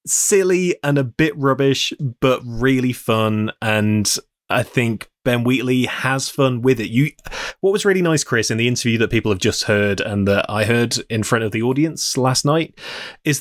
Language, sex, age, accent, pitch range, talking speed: English, male, 20-39, British, 110-140 Hz, 190 wpm